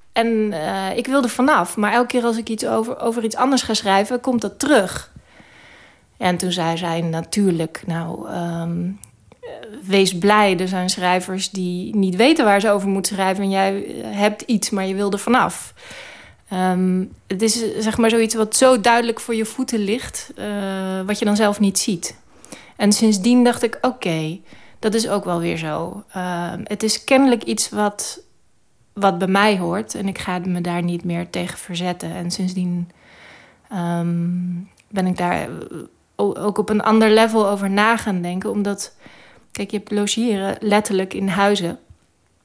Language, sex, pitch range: Dutch, female, 185-220 Hz